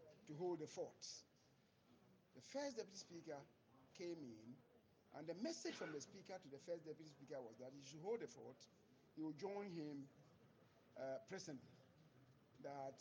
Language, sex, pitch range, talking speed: English, male, 135-175 Hz, 160 wpm